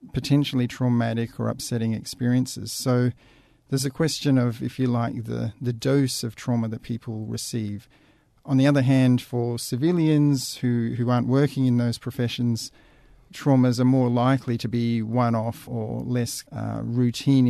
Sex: male